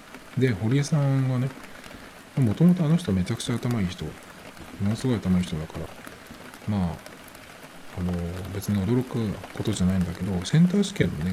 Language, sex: Japanese, male